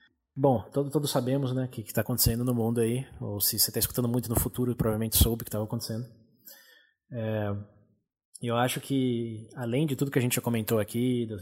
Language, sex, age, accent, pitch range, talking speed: Portuguese, male, 20-39, Brazilian, 110-125 Hz, 215 wpm